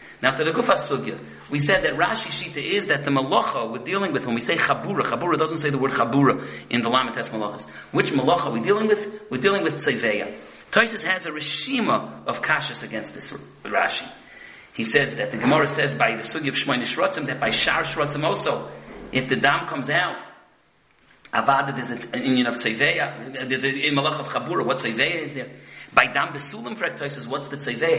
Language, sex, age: English, male, 40-59